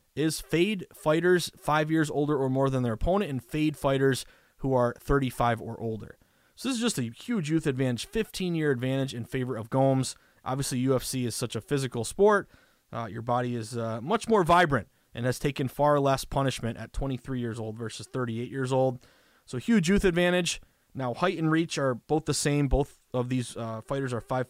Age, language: 20-39, English